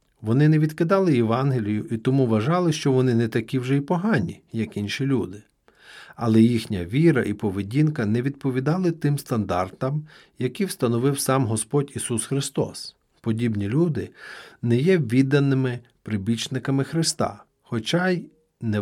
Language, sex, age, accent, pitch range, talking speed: Ukrainian, male, 40-59, native, 110-150 Hz, 135 wpm